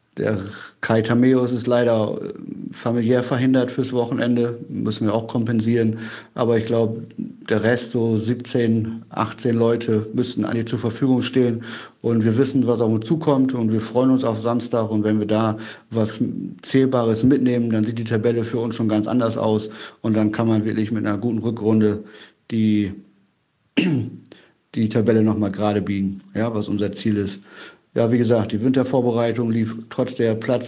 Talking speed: 170 wpm